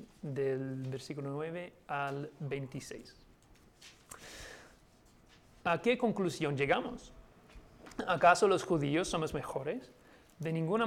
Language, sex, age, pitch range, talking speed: Spanish, male, 30-49, 140-175 Hz, 90 wpm